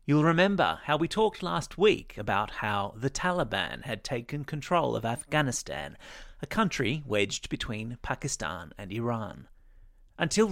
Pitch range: 115-160 Hz